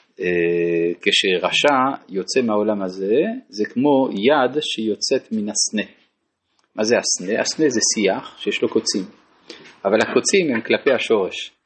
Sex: male